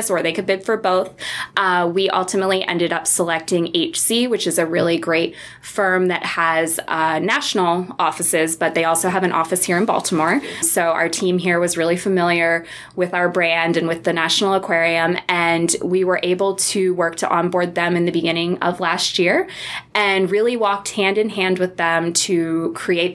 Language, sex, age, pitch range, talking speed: English, female, 20-39, 165-195 Hz, 190 wpm